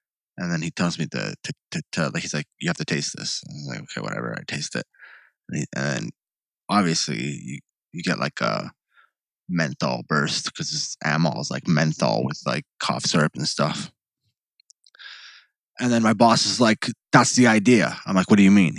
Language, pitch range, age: English, 95-125 Hz, 20-39